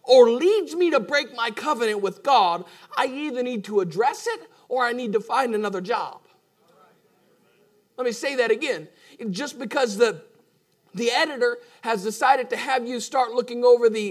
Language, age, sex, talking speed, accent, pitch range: English, 40-59, male, 175 wpm, American, 220-320 Hz